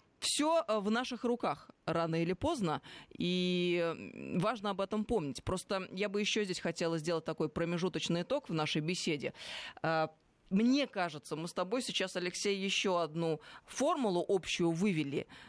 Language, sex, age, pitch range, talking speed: Russian, female, 20-39, 170-225 Hz, 145 wpm